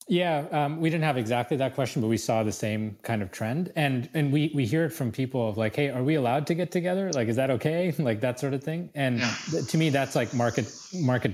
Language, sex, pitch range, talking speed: English, male, 110-140 Hz, 265 wpm